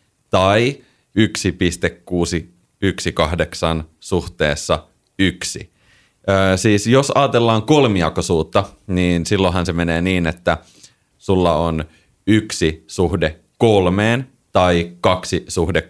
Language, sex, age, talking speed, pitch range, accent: Finnish, male, 30-49, 85 wpm, 90-125 Hz, native